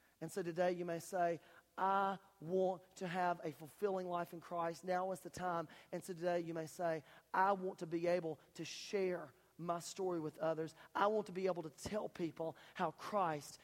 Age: 40-59